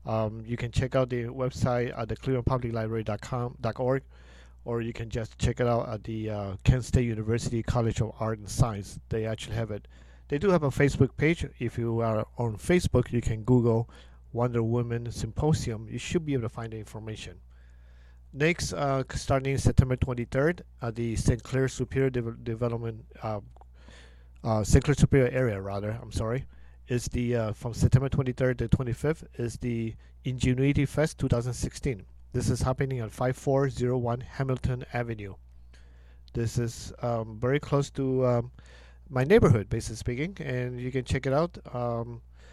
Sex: male